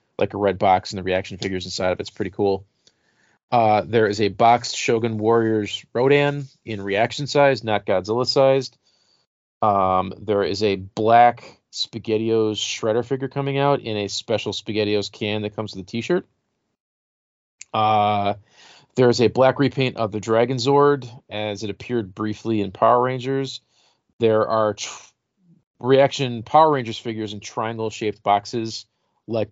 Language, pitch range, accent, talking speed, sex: English, 100-125 Hz, American, 150 wpm, male